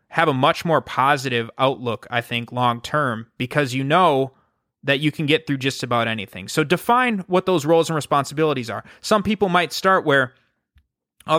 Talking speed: 180 wpm